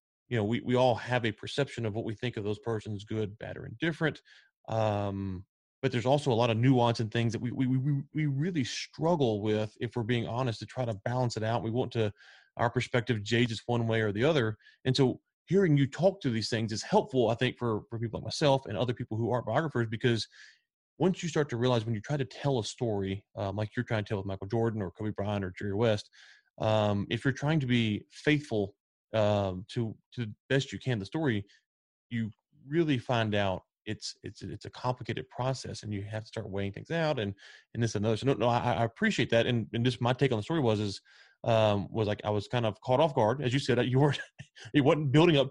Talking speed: 250 wpm